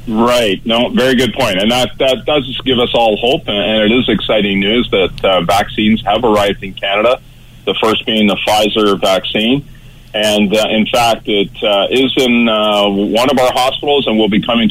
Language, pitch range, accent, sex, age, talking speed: English, 100-115 Hz, American, male, 40-59, 195 wpm